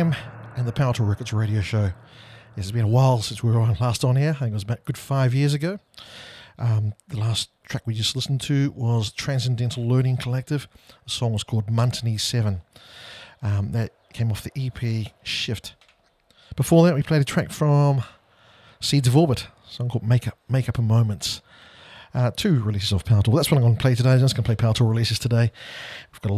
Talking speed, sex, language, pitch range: 210 wpm, male, English, 105-125 Hz